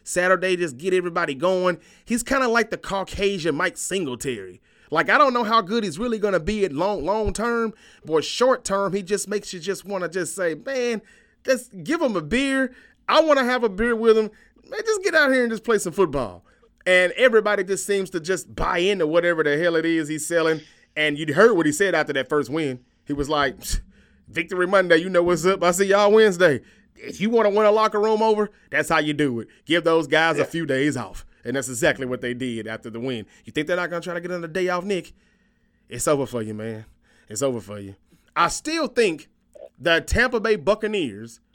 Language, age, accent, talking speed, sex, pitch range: English, 30-49, American, 235 wpm, male, 140-205 Hz